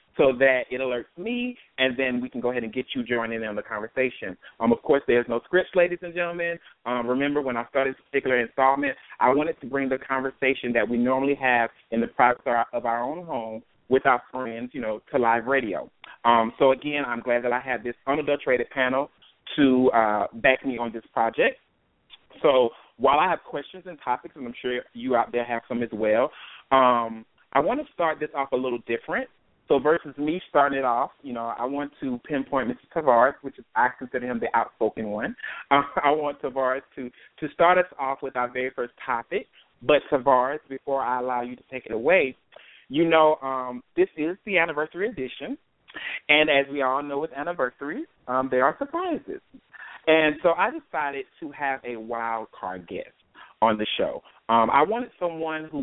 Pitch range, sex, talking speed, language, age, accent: 120-155 Hz, male, 205 wpm, English, 30-49, American